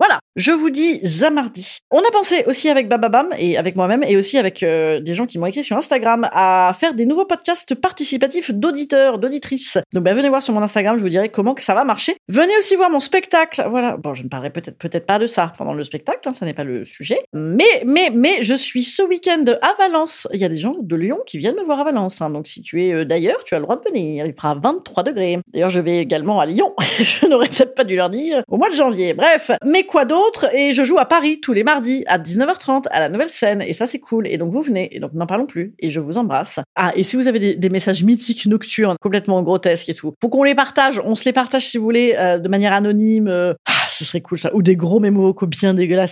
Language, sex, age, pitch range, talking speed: French, female, 40-59, 180-280 Hz, 270 wpm